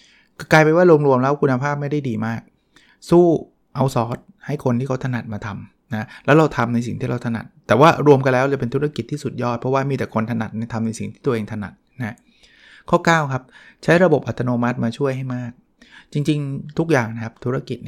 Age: 20-39